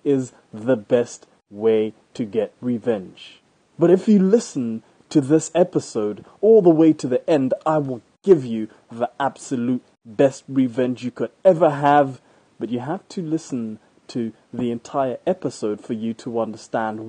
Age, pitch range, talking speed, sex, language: 20-39, 115-155 Hz, 160 wpm, male, English